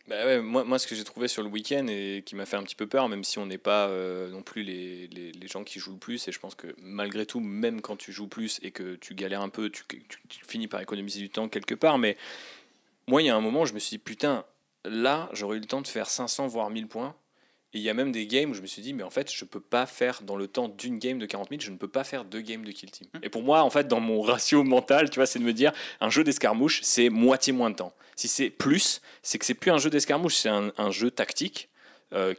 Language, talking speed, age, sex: French, 300 wpm, 30-49, male